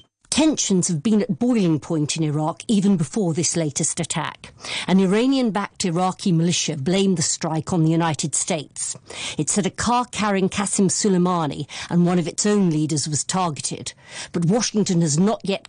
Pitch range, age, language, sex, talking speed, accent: 165-195 Hz, 50-69, English, female, 170 wpm, British